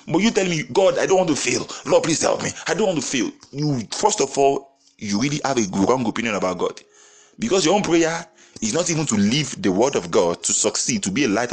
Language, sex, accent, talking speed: English, male, Nigerian, 260 wpm